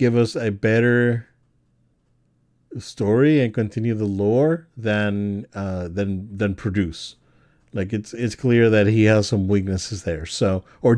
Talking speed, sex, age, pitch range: 140 wpm, male, 40-59, 100-130 Hz